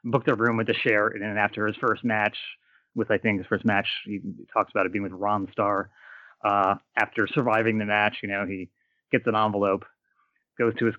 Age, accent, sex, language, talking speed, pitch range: 30-49, American, male, English, 220 wpm, 110-130 Hz